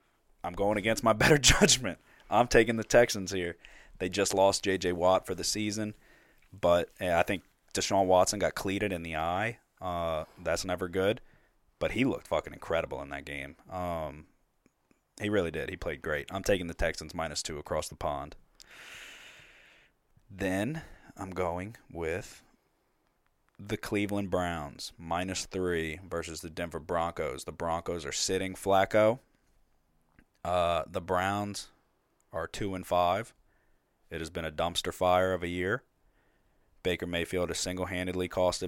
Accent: American